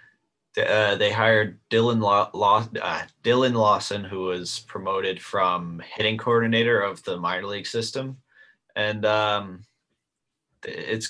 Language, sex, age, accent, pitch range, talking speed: English, male, 20-39, American, 95-120 Hz, 110 wpm